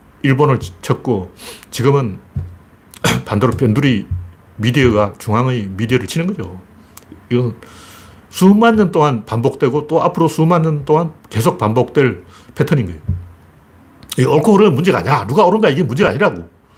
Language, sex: Korean, male